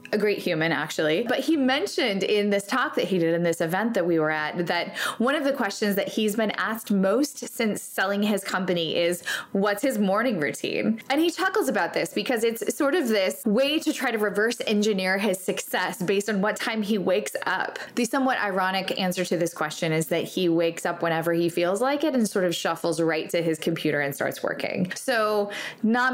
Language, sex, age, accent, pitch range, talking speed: English, female, 20-39, American, 175-230 Hz, 215 wpm